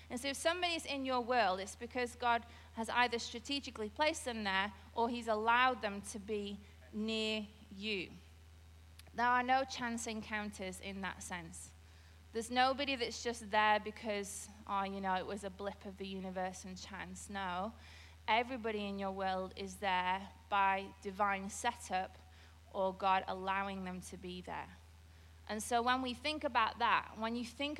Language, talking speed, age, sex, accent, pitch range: English, 165 wpm, 30-49, female, British, 180-235 Hz